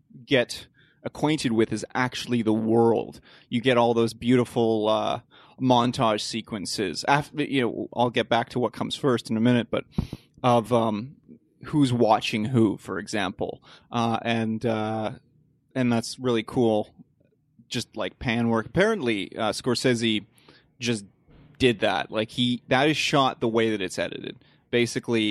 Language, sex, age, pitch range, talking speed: English, male, 30-49, 115-130 Hz, 150 wpm